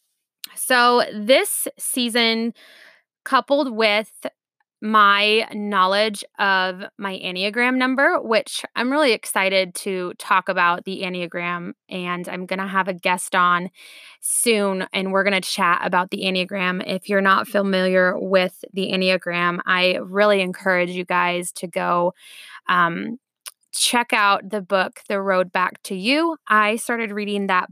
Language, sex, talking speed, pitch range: English, female, 140 wpm, 180-215 Hz